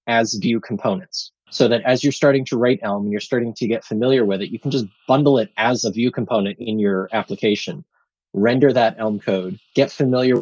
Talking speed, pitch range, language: 215 wpm, 110-135 Hz, English